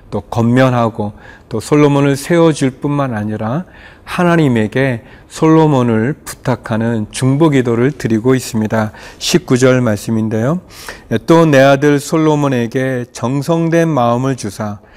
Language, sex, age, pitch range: Korean, male, 40-59, 115-150 Hz